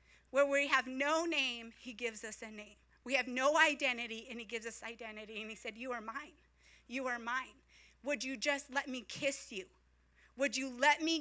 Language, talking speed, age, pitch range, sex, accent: English, 210 wpm, 30-49, 225-295 Hz, female, American